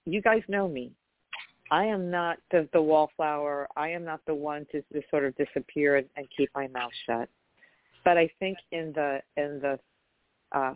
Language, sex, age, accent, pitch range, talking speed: English, female, 40-59, American, 135-160 Hz, 190 wpm